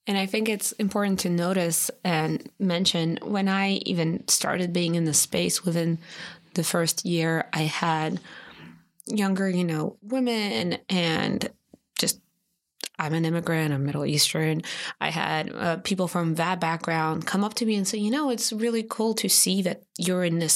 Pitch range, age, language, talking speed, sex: 165-195 Hz, 20-39, English, 170 wpm, female